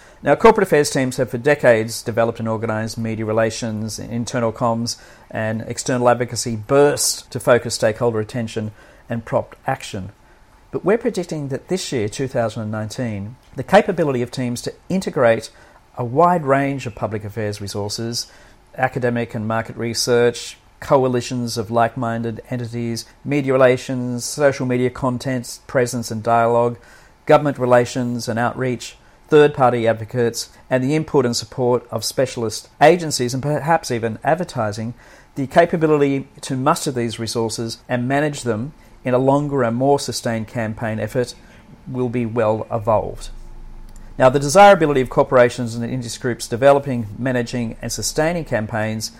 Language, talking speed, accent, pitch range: English, 140 wpm, Australian, 115-135 Hz